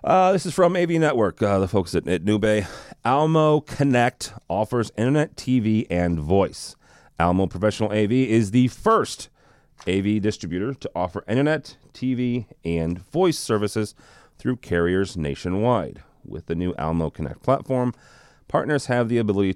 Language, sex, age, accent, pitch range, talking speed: English, male, 40-59, American, 85-120 Hz, 145 wpm